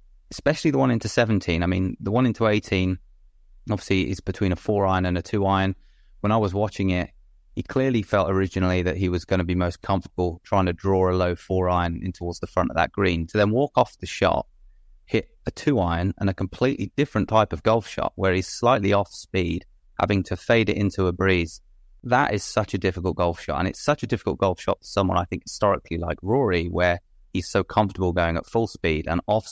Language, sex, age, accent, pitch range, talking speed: English, male, 30-49, British, 85-105 Hz, 230 wpm